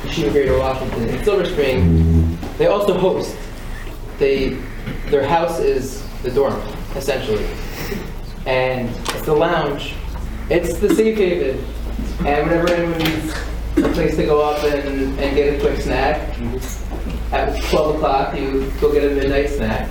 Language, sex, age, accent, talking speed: English, male, 20-39, American, 140 wpm